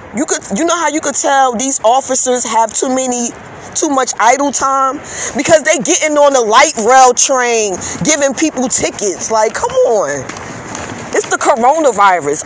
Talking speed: 165 wpm